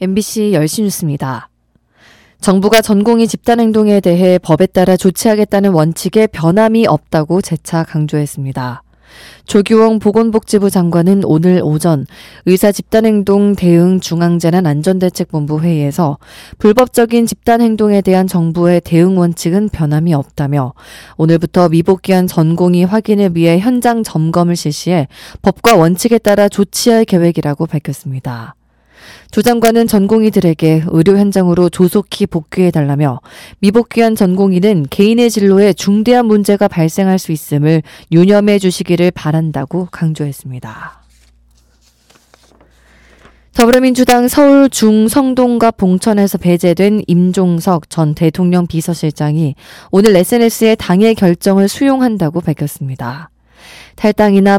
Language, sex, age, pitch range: Korean, female, 20-39, 160-210 Hz